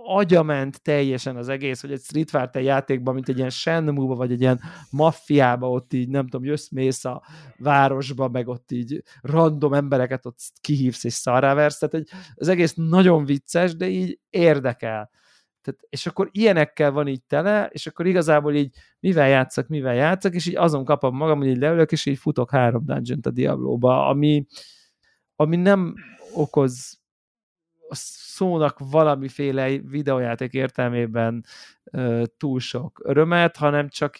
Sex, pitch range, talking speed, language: male, 130-160 Hz, 150 wpm, Hungarian